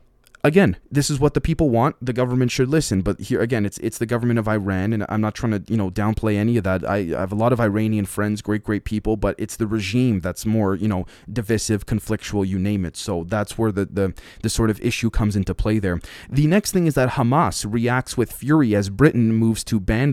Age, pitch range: 20-39, 105-125 Hz